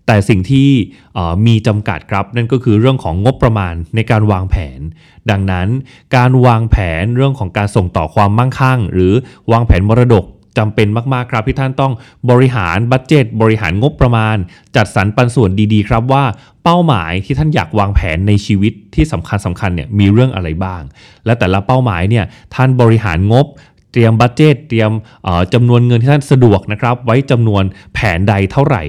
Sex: male